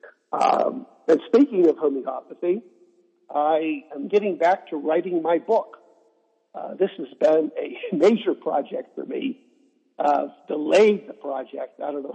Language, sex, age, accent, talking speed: English, male, 60-79, American, 145 wpm